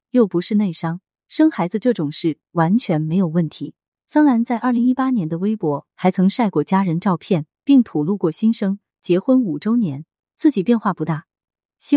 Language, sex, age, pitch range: Chinese, female, 30-49, 165-240 Hz